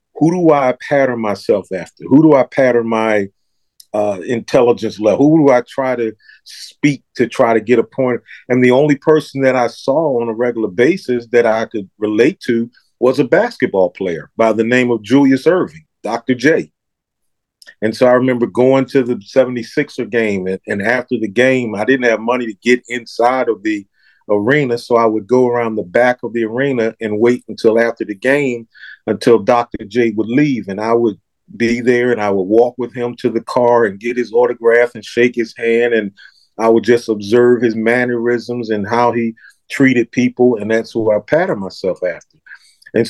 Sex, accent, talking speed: male, American, 195 wpm